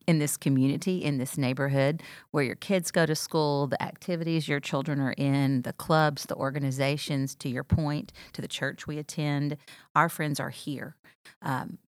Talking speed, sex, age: 175 wpm, female, 40-59